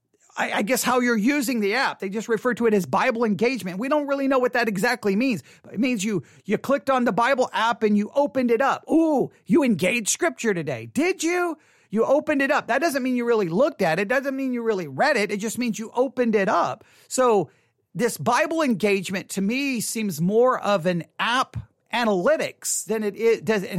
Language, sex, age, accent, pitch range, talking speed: English, male, 40-59, American, 190-265 Hz, 210 wpm